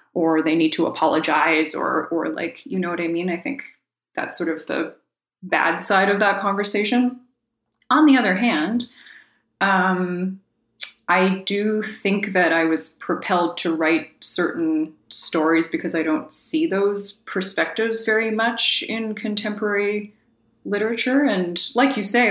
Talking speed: 150 wpm